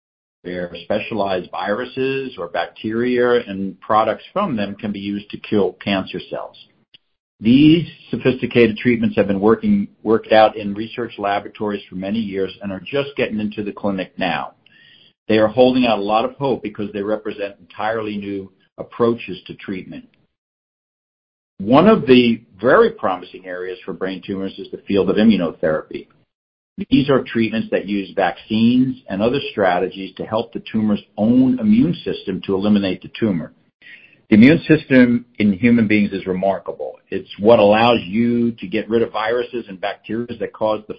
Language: English